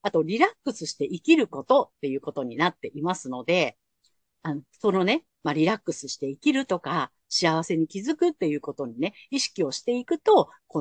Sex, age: female, 50-69